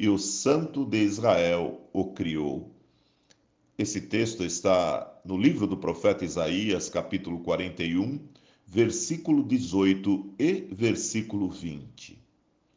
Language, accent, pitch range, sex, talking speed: Portuguese, Brazilian, 90-125 Hz, male, 105 wpm